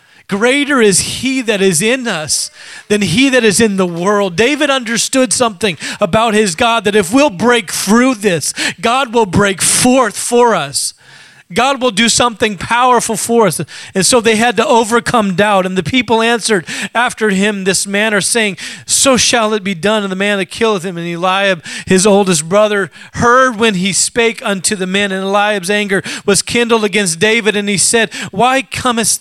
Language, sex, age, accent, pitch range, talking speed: English, male, 30-49, American, 185-230 Hz, 185 wpm